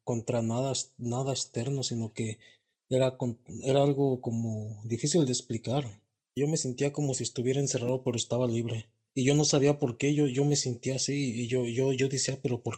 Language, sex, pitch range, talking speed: Spanish, male, 125-150 Hz, 195 wpm